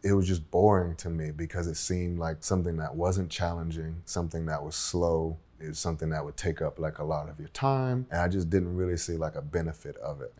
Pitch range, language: 80-95 Hz, English